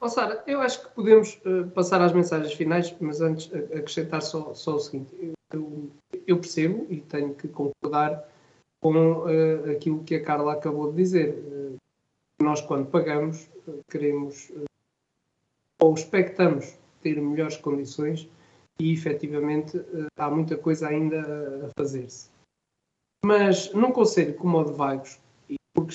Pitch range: 150-185 Hz